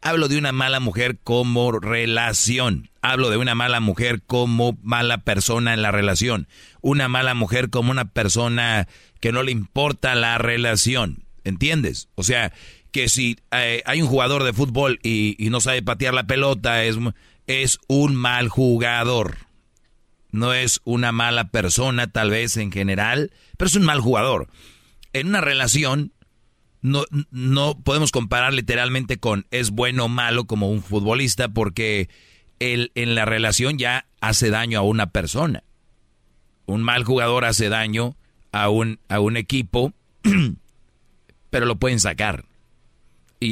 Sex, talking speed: male, 145 wpm